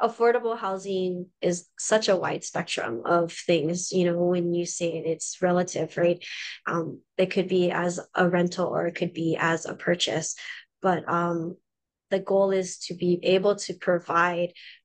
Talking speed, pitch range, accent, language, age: 170 wpm, 175-200 Hz, American, English, 20-39